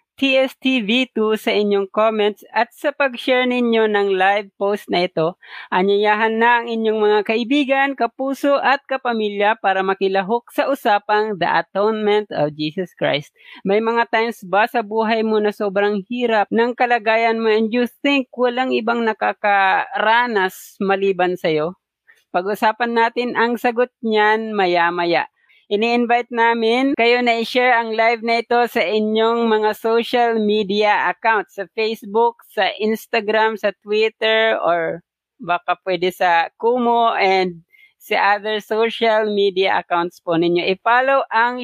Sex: female